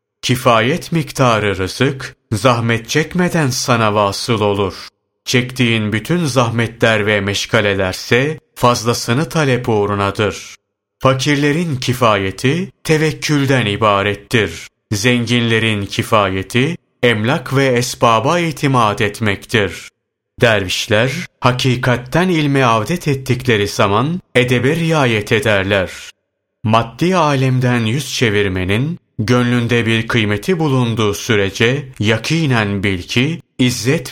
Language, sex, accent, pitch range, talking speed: Turkish, male, native, 110-135 Hz, 85 wpm